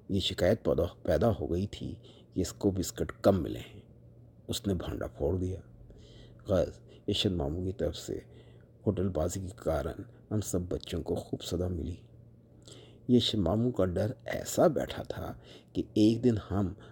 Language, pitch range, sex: Urdu, 90-115 Hz, male